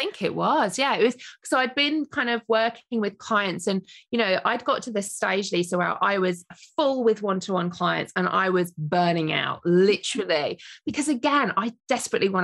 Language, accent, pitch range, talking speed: English, British, 185-275 Hz, 205 wpm